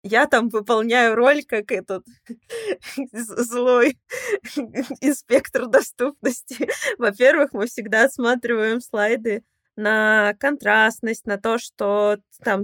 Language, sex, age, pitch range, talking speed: Russian, female, 20-39, 200-250 Hz, 95 wpm